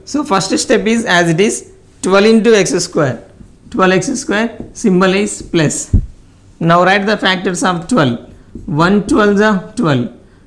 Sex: male